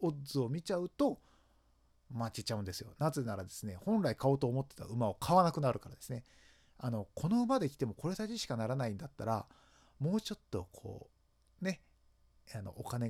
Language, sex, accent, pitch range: Japanese, male, native, 110-165 Hz